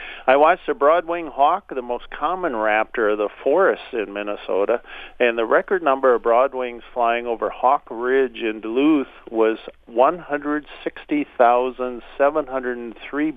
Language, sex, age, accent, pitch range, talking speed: English, male, 50-69, American, 110-135 Hz, 125 wpm